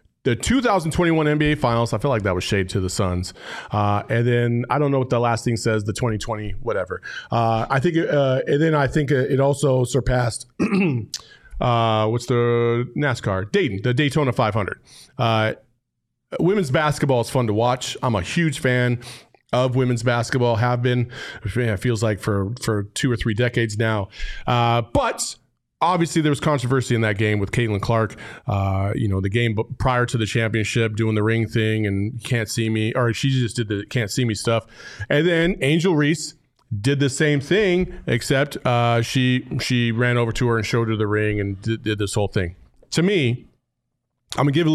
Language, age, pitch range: English, 30-49, 110-150 Hz